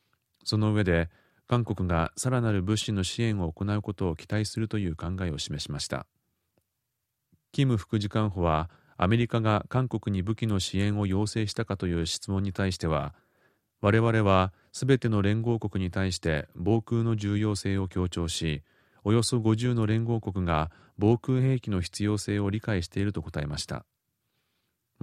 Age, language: 40-59, Japanese